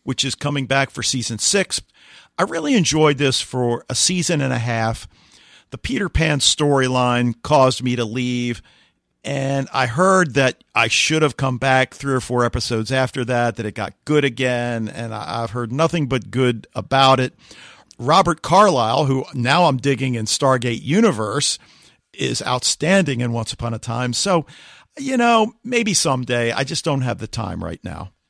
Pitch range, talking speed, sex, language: 120-150 Hz, 175 wpm, male, English